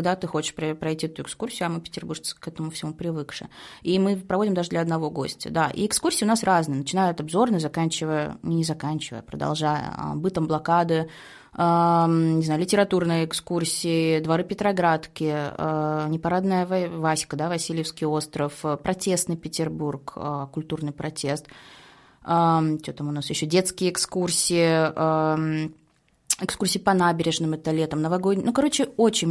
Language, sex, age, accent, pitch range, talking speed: Russian, female, 20-39, native, 155-185 Hz, 145 wpm